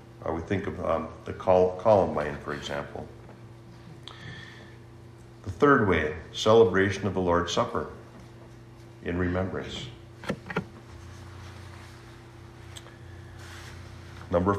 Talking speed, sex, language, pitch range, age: 85 wpm, male, English, 95-115 Hz, 60-79